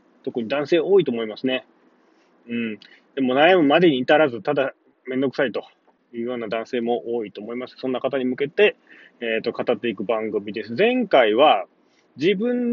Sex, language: male, Japanese